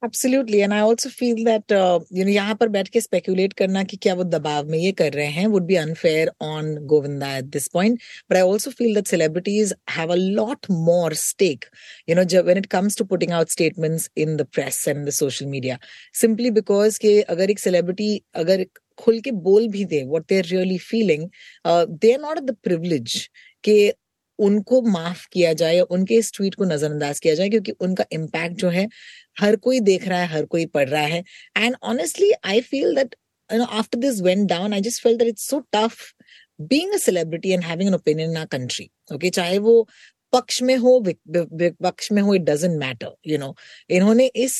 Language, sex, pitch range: Hindi, female, 165-225 Hz